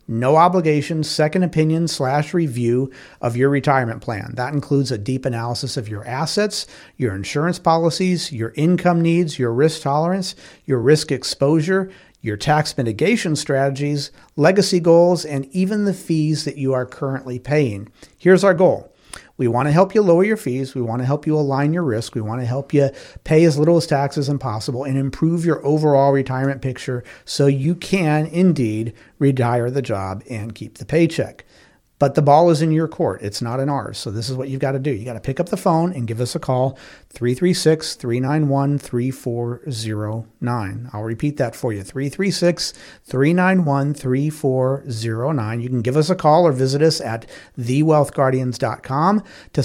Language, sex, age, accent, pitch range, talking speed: English, male, 50-69, American, 125-160 Hz, 175 wpm